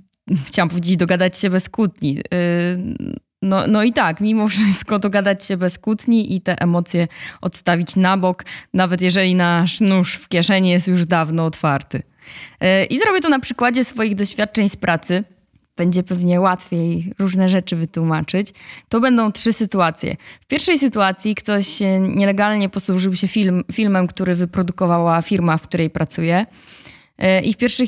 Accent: native